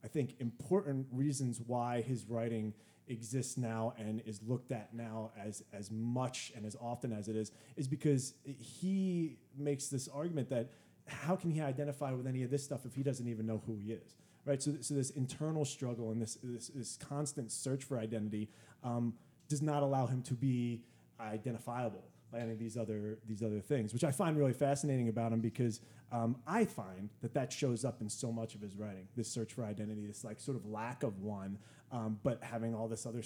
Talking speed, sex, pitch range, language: 205 wpm, male, 110-140 Hz, English